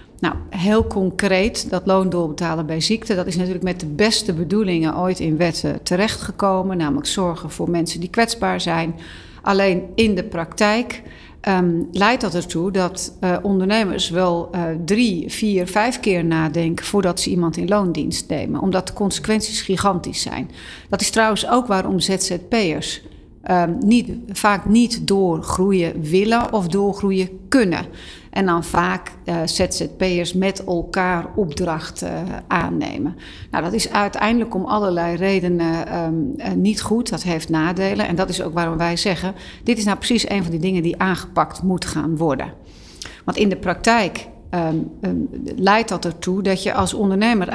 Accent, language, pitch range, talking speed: Dutch, Dutch, 170-205 Hz, 150 wpm